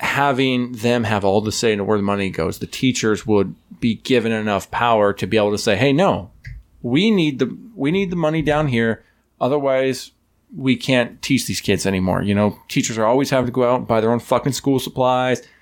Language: English